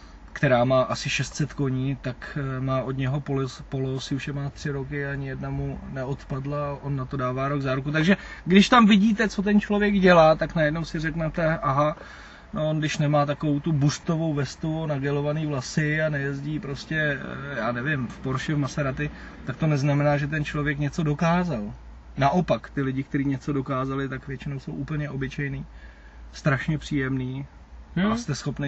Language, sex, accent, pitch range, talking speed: Czech, male, native, 130-155 Hz, 170 wpm